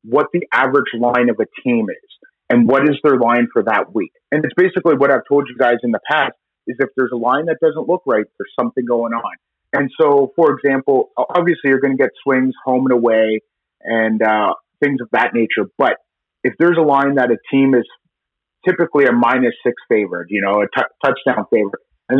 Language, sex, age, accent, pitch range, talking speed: English, male, 30-49, American, 115-140 Hz, 215 wpm